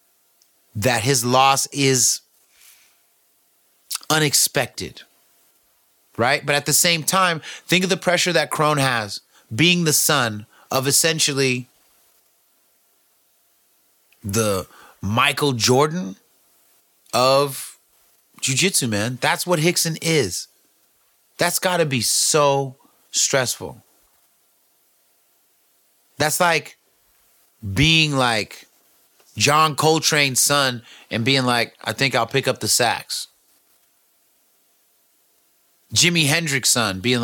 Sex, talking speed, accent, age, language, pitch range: male, 95 wpm, American, 30-49, English, 120-155 Hz